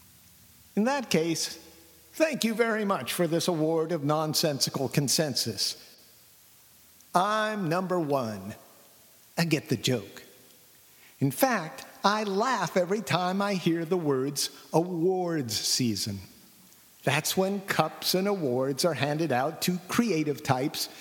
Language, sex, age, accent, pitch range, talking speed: English, male, 50-69, American, 130-185 Hz, 125 wpm